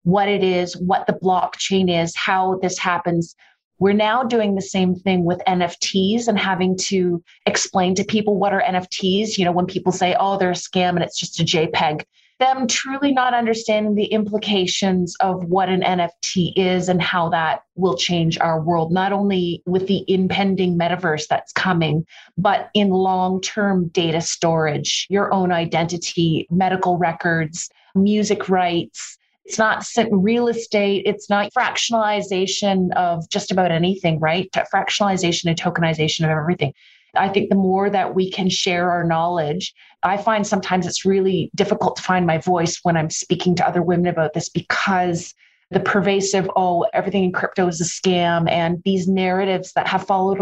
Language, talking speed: English, 165 wpm